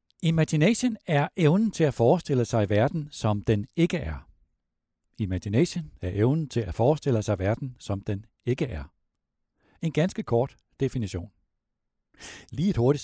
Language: Danish